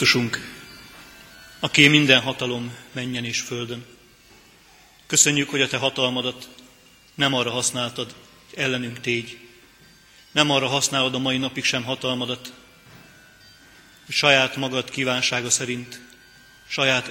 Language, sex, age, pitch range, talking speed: Hungarian, male, 30-49, 125-135 Hz, 110 wpm